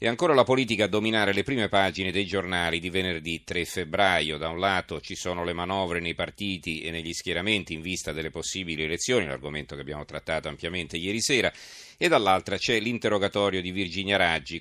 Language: Italian